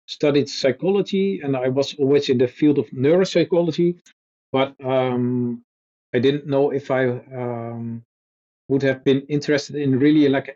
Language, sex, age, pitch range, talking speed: English, male, 40-59, 125-150 Hz, 150 wpm